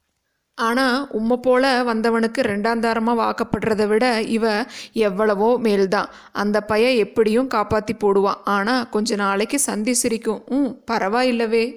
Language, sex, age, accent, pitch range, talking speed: Tamil, female, 20-39, native, 215-250 Hz, 110 wpm